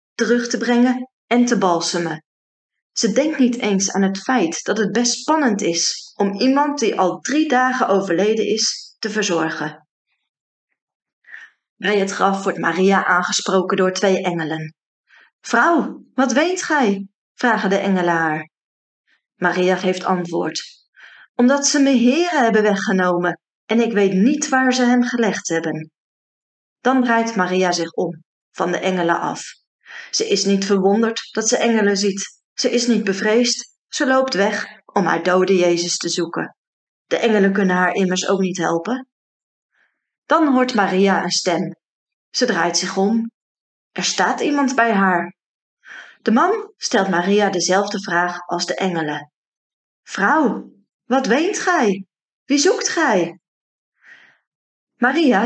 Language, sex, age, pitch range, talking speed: Dutch, female, 30-49, 180-245 Hz, 145 wpm